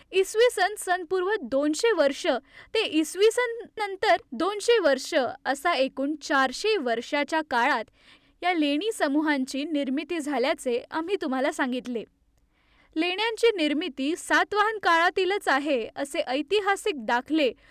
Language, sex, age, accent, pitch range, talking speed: Marathi, female, 10-29, native, 280-370 Hz, 65 wpm